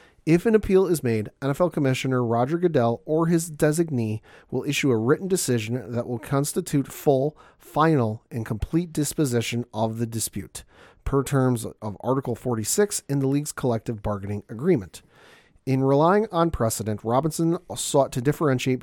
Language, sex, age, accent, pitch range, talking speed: English, male, 40-59, American, 115-145 Hz, 150 wpm